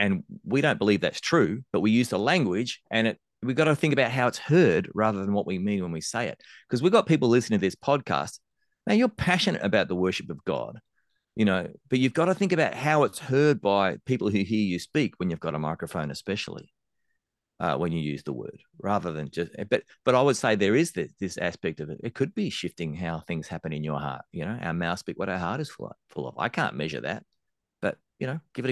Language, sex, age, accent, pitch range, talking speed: English, male, 30-49, Australian, 95-135 Hz, 250 wpm